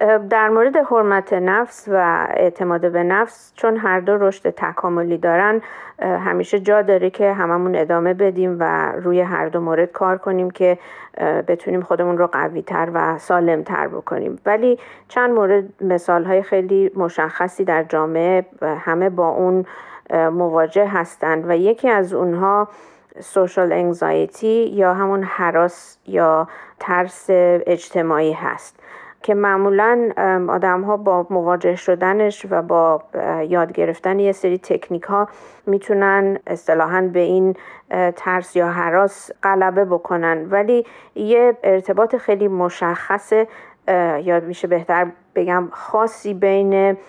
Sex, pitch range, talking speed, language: female, 170-195 Hz, 125 wpm, Persian